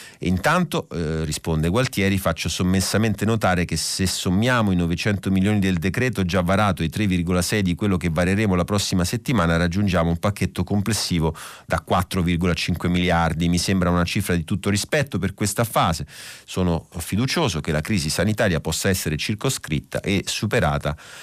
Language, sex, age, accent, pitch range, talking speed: Italian, male, 30-49, native, 80-100 Hz, 155 wpm